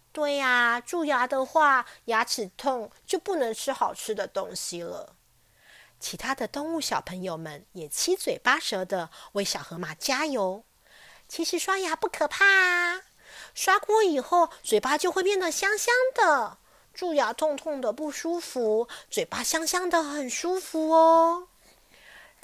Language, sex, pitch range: Chinese, female, 195-325 Hz